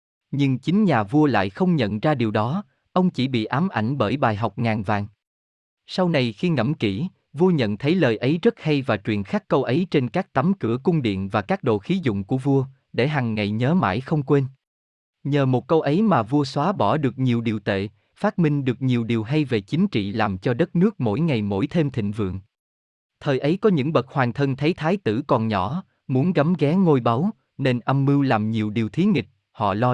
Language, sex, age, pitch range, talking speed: Vietnamese, male, 20-39, 115-160 Hz, 230 wpm